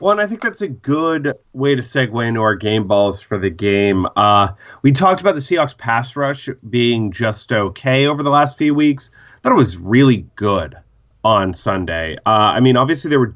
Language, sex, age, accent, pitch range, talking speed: English, male, 30-49, American, 105-130 Hz, 210 wpm